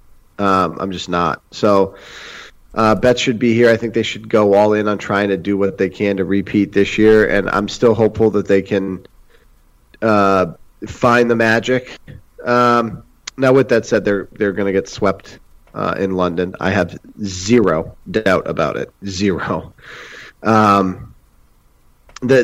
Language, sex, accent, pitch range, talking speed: English, male, American, 95-110 Hz, 165 wpm